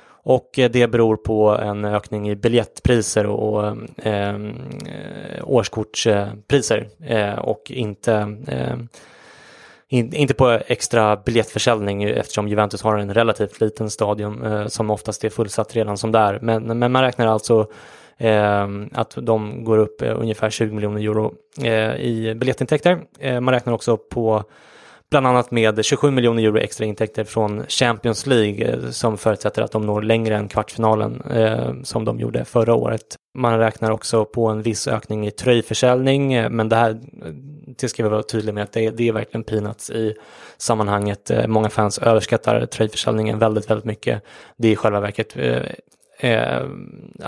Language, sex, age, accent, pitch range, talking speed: English, male, 20-39, Swedish, 105-115 Hz, 145 wpm